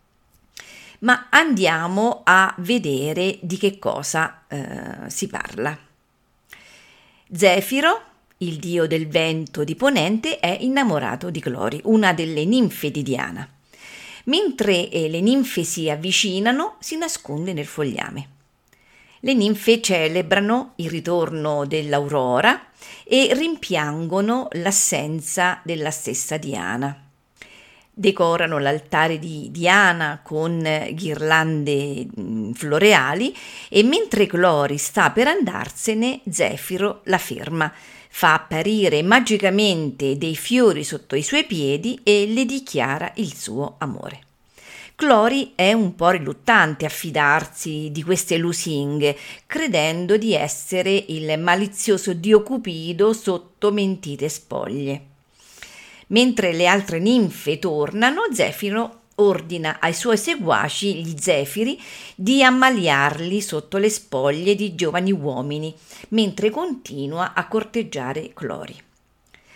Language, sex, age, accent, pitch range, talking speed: Italian, female, 50-69, native, 155-215 Hz, 105 wpm